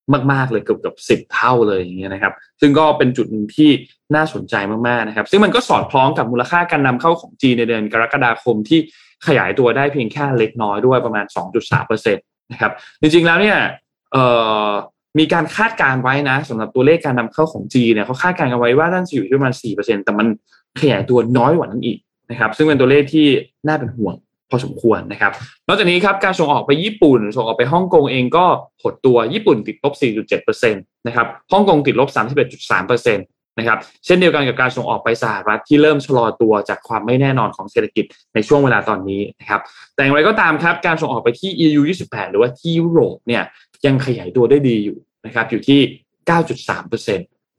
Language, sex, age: Thai, male, 20-39